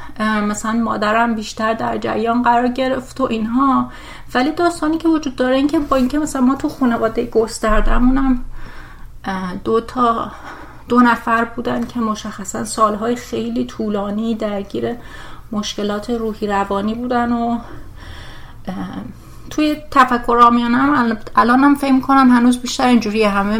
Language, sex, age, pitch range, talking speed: Persian, female, 30-49, 205-245 Hz, 125 wpm